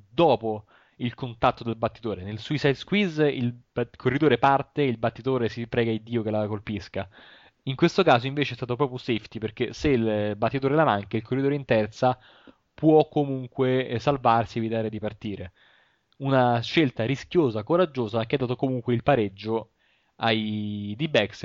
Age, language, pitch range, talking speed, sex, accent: 20-39, Italian, 110-140 Hz, 170 wpm, male, native